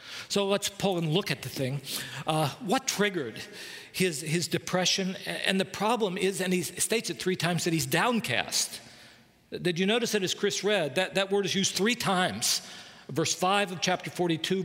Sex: male